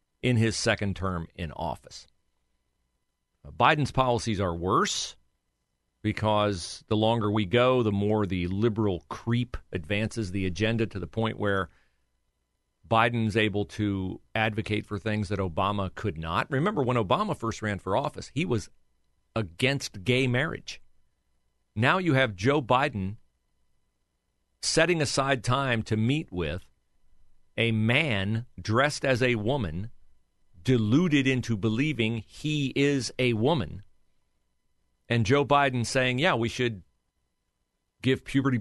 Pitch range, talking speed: 95-125 Hz, 125 wpm